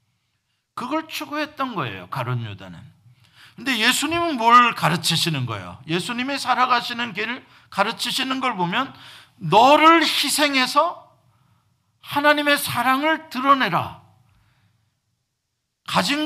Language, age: Korean, 50-69